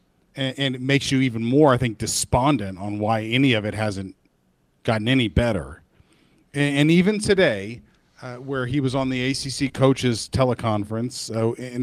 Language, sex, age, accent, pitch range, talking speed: English, male, 40-59, American, 110-145 Hz, 155 wpm